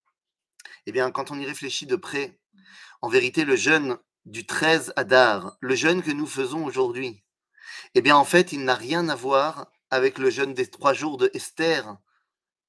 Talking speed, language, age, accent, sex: 180 wpm, French, 30-49, French, male